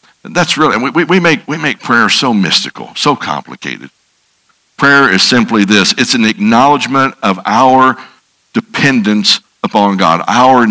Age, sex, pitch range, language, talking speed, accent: 60-79, male, 95-130 Hz, English, 145 wpm, American